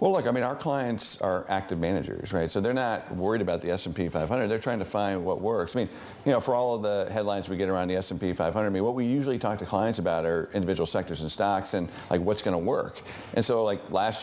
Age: 50-69